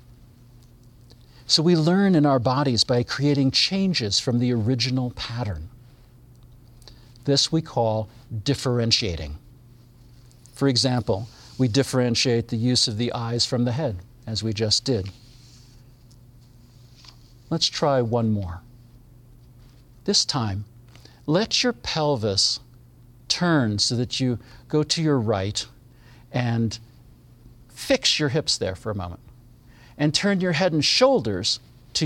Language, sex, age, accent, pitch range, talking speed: English, male, 50-69, American, 120-140 Hz, 120 wpm